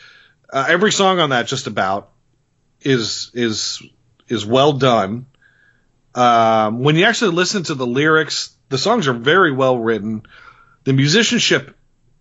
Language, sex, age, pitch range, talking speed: English, male, 40-59, 110-145 Hz, 140 wpm